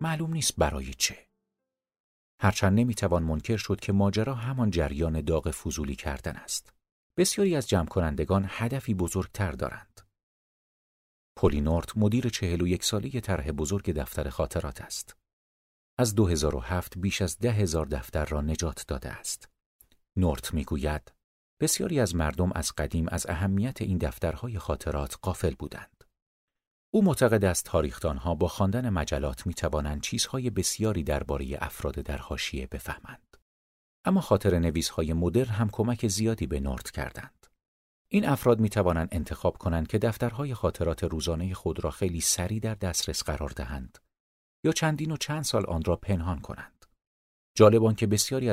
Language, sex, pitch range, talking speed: Persian, male, 80-110 Hz, 140 wpm